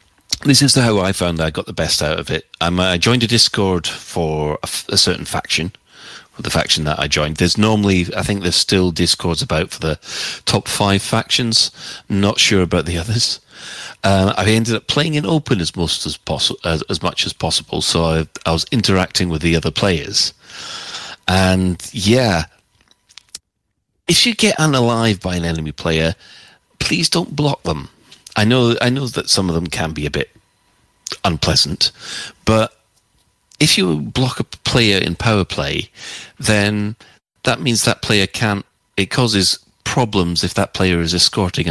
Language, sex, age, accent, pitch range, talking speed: English, male, 40-59, British, 85-115 Hz, 170 wpm